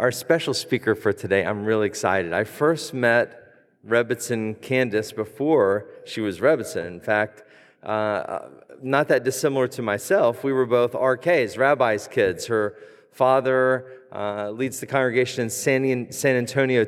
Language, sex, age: English, male, 40-59